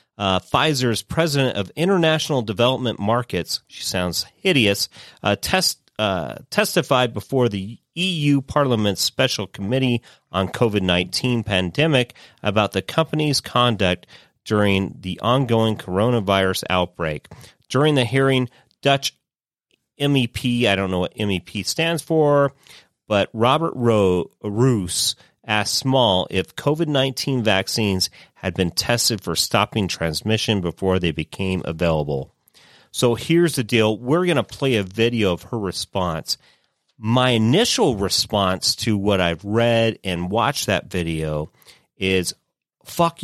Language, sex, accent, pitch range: English, male, American, 95-135 Hz